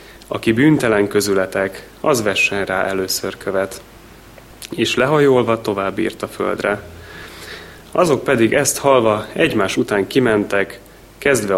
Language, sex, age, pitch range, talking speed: Hungarian, male, 30-49, 95-115 Hz, 115 wpm